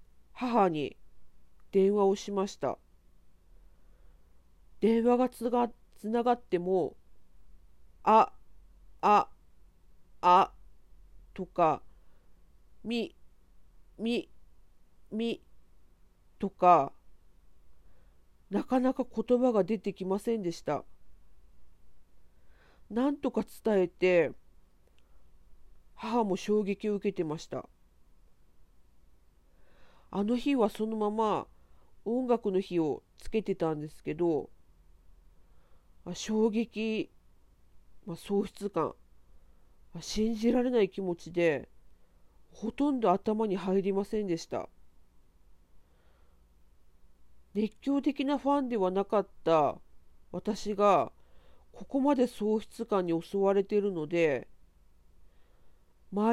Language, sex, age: Japanese, female, 40-59